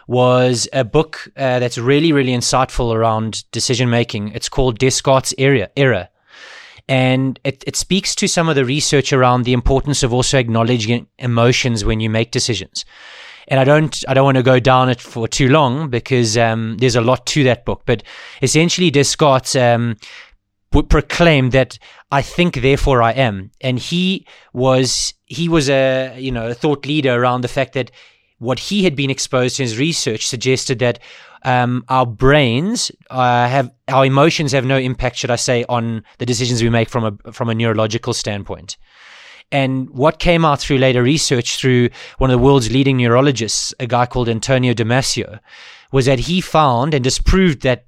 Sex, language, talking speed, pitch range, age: male, English, 180 wpm, 120-135 Hz, 20-39